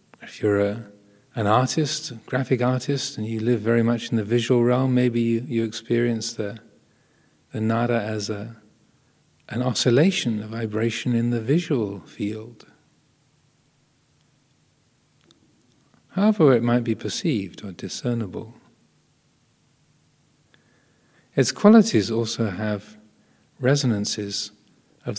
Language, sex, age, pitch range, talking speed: English, male, 40-59, 115-150 Hz, 105 wpm